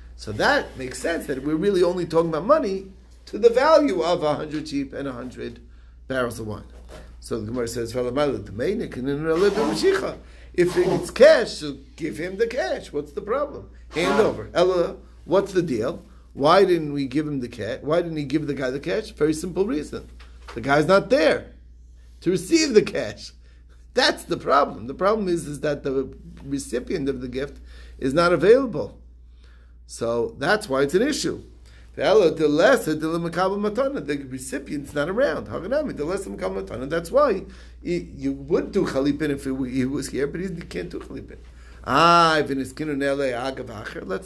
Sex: male